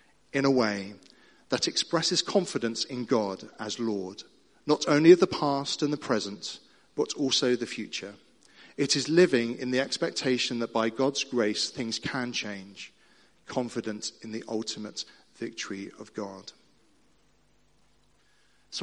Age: 40-59